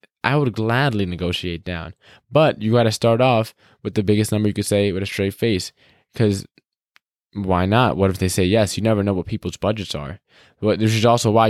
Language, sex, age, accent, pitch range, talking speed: English, male, 10-29, American, 95-115 Hz, 220 wpm